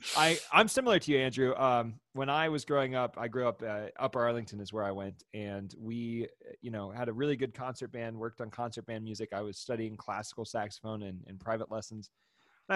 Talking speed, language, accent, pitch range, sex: 215 wpm, English, American, 100-120 Hz, male